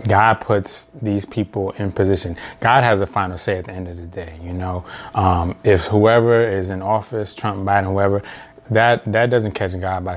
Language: English